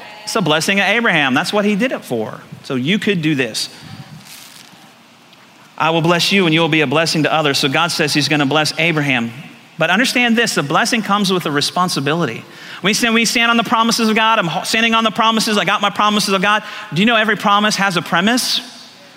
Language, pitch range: English, 180-215 Hz